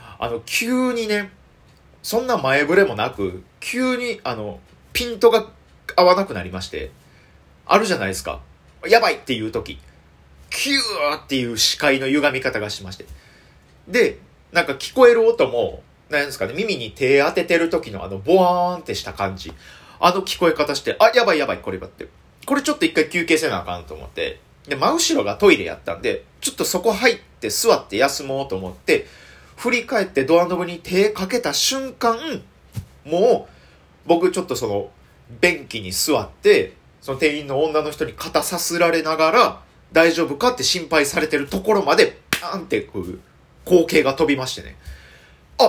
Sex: male